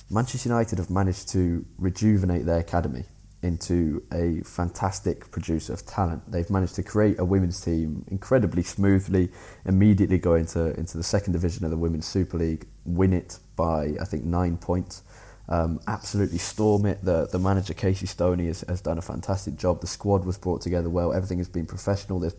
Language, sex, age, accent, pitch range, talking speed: English, male, 20-39, British, 85-105 Hz, 180 wpm